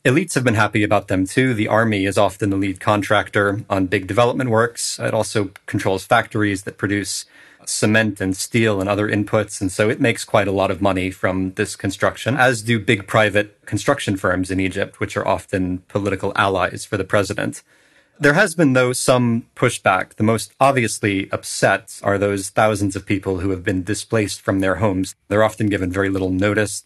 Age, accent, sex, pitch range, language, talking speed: 30-49, American, male, 95-115 Hz, English, 190 wpm